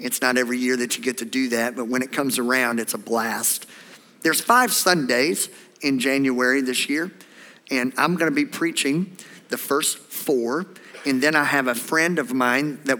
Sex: male